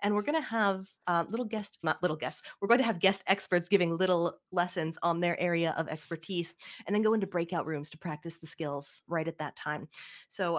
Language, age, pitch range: English, 30-49, 160-195 Hz